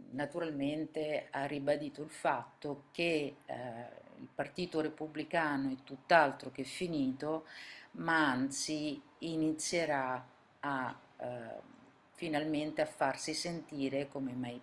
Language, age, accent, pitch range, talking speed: Italian, 50-69, native, 140-165 Hz, 105 wpm